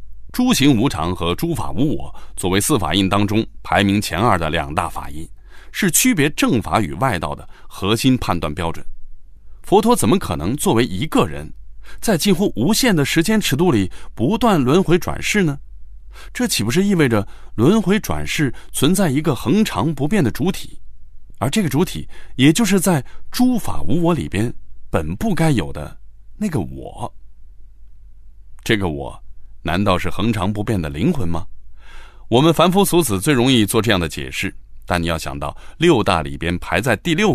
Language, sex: Chinese, male